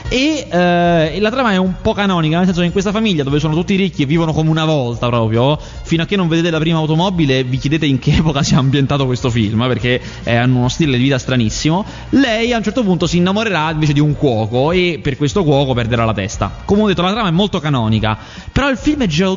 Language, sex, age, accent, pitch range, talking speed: Italian, male, 20-39, native, 125-180 Hz, 250 wpm